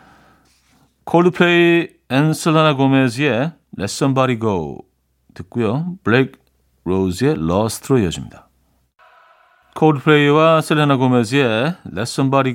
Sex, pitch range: male, 100-155 Hz